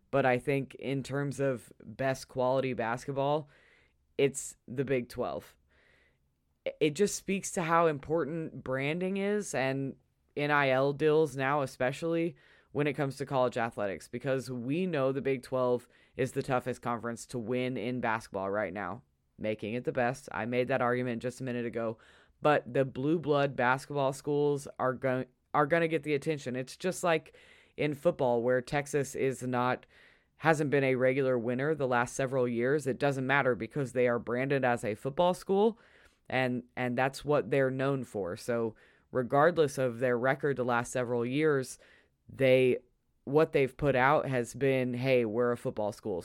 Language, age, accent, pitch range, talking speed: English, 20-39, American, 125-145 Hz, 165 wpm